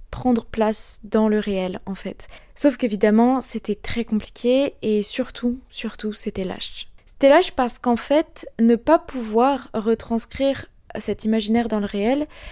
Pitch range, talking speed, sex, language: 215-260 Hz, 150 wpm, female, French